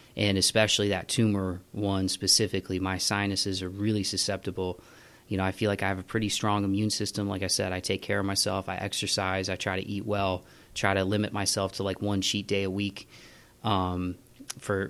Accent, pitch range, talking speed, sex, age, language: American, 95-100 Hz, 205 wpm, male, 20-39, English